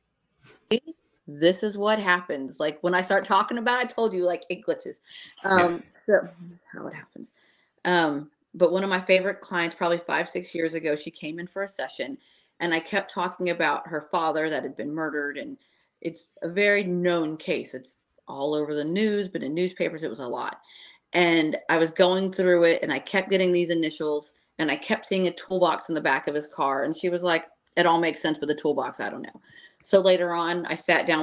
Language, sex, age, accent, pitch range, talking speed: English, female, 30-49, American, 155-185 Hz, 215 wpm